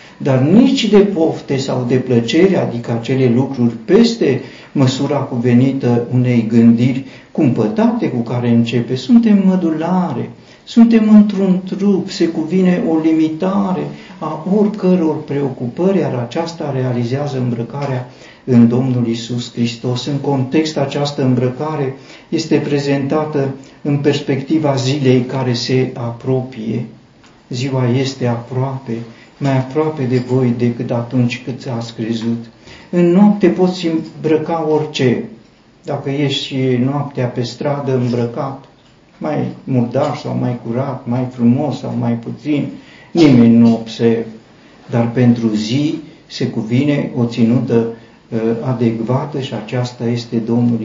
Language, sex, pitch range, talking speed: Romanian, male, 120-155 Hz, 120 wpm